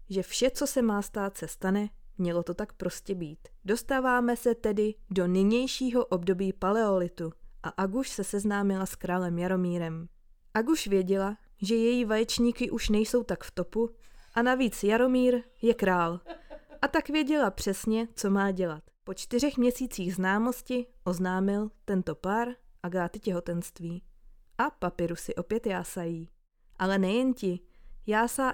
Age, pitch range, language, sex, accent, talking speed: 20-39, 185-230 Hz, Czech, female, native, 140 wpm